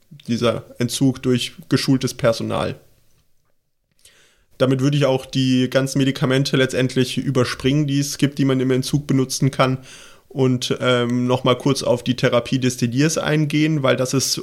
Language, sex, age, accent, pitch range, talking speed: German, male, 30-49, German, 125-140 Hz, 150 wpm